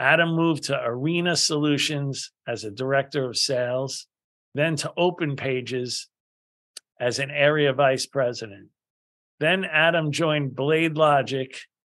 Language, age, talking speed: English, 50-69, 120 wpm